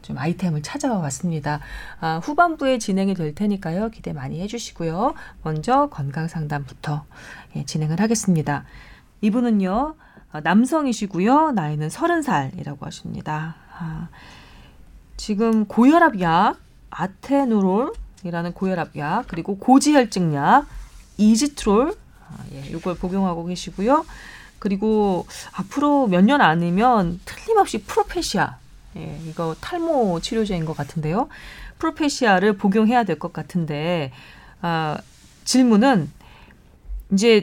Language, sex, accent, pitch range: Korean, female, native, 165-235 Hz